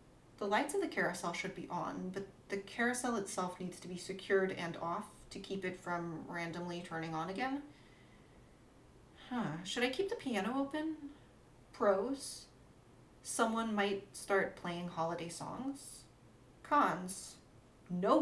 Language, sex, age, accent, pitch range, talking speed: English, female, 30-49, American, 175-230 Hz, 140 wpm